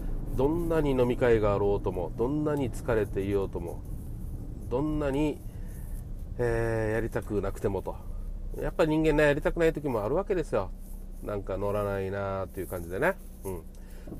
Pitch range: 95-130 Hz